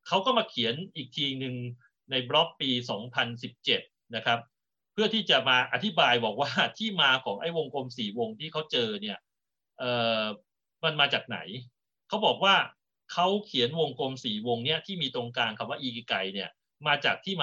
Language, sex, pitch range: Thai, male, 115-165 Hz